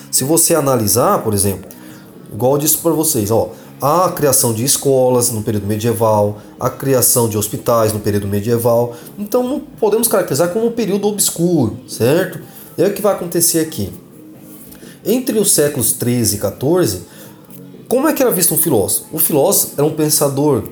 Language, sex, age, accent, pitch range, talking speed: Portuguese, male, 20-39, Brazilian, 120-175 Hz, 170 wpm